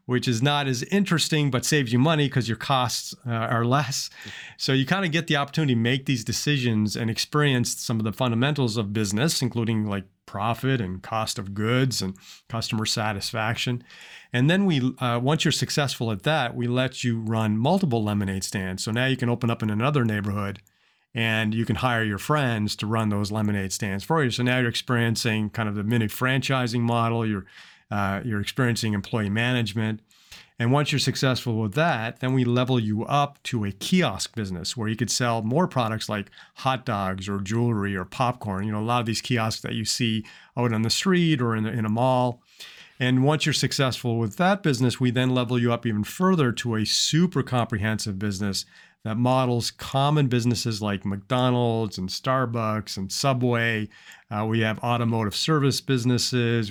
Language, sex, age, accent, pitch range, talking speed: English, male, 40-59, American, 110-130 Hz, 190 wpm